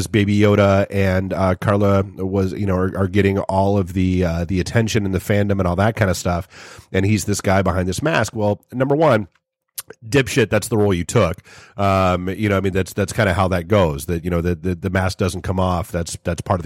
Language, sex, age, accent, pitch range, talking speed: English, male, 30-49, American, 95-105 Hz, 245 wpm